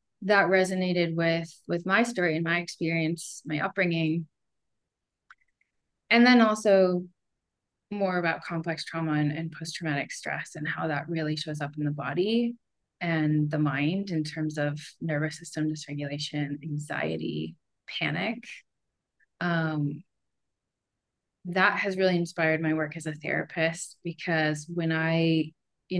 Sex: female